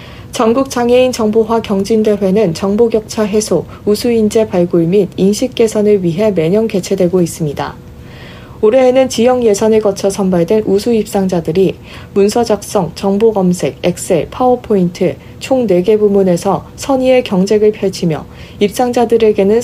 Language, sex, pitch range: Korean, female, 185-230 Hz